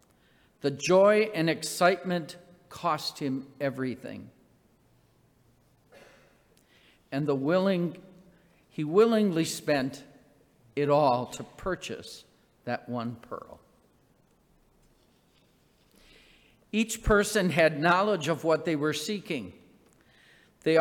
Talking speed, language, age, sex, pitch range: 85 wpm, English, 50-69, male, 145-195 Hz